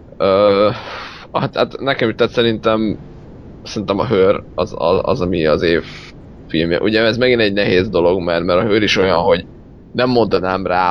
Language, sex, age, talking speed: Hungarian, male, 30-49, 170 wpm